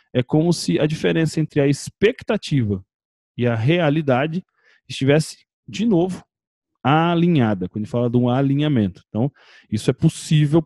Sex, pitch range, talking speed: male, 120-170 Hz, 135 wpm